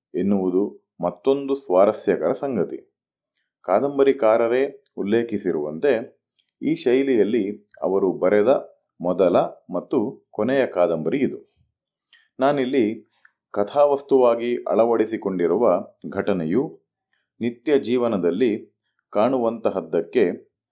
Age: 30-49